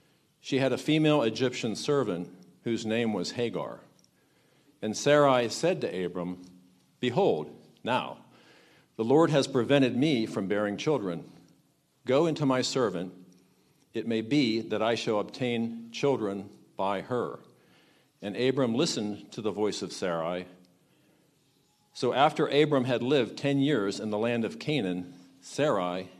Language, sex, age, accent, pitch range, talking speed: English, male, 50-69, American, 95-135 Hz, 135 wpm